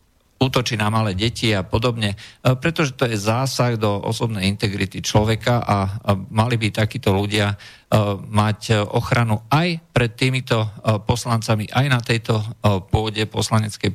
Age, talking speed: 50-69, 130 wpm